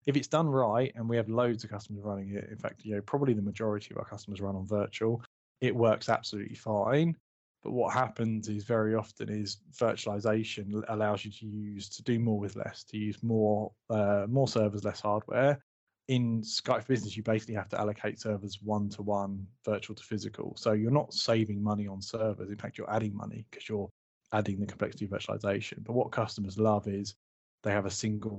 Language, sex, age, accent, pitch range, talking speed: English, male, 20-39, British, 105-115 Hz, 200 wpm